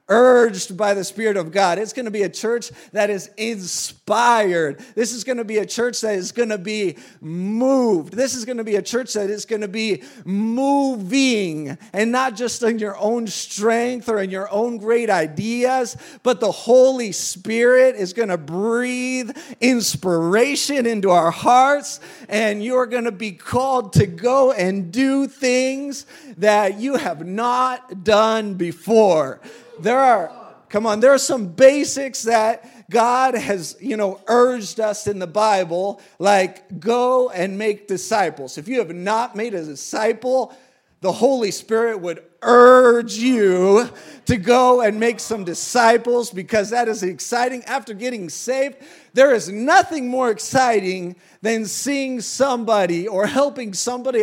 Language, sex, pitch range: English, male, 200-250 Hz